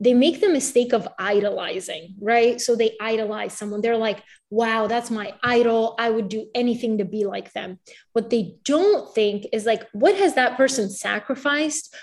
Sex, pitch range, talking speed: female, 215-255 Hz, 180 wpm